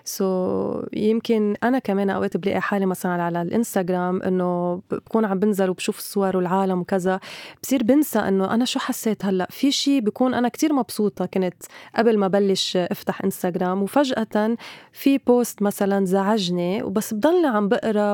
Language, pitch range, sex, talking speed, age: Arabic, 195-240 Hz, female, 155 wpm, 20-39